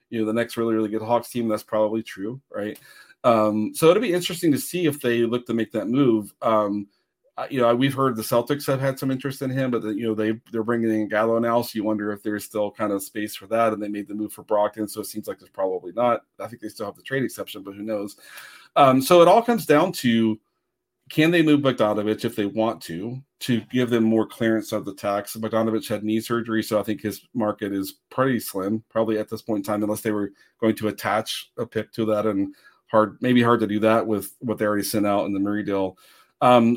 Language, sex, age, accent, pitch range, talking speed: English, male, 40-59, American, 105-120 Hz, 255 wpm